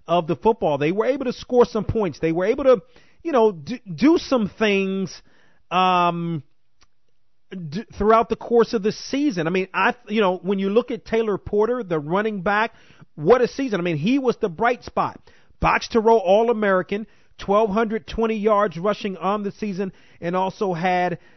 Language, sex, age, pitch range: English, male, 40-59, 170-215 Hz